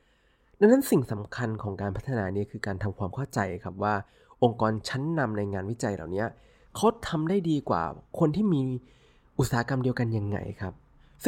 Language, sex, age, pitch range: Thai, male, 20-39, 105-145 Hz